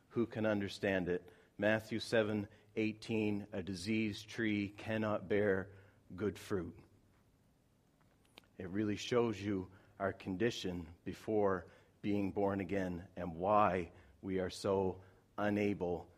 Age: 40-59